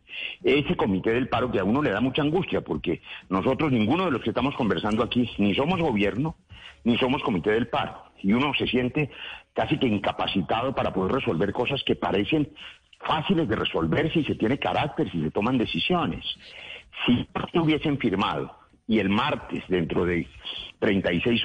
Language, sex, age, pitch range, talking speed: Spanish, male, 50-69, 95-125 Hz, 170 wpm